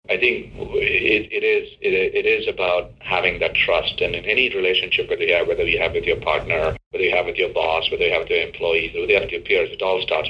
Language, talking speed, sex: English, 260 wpm, male